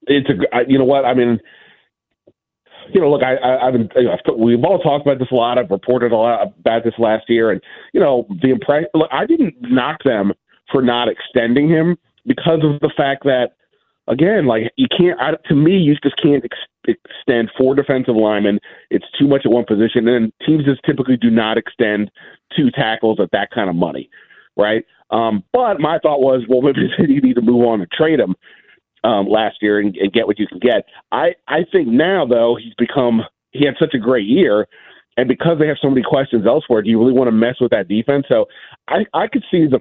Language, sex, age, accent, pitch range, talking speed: English, male, 40-59, American, 115-145 Hz, 225 wpm